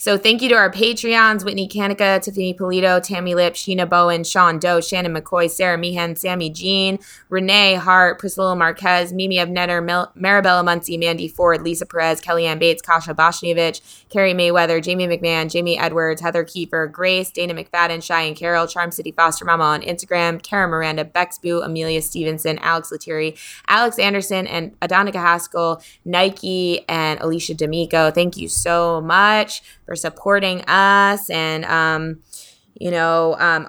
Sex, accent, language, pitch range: female, American, English, 160-185 Hz